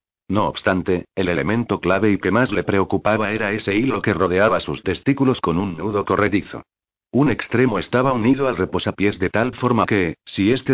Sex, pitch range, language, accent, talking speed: male, 95-115 Hz, Spanish, Spanish, 185 wpm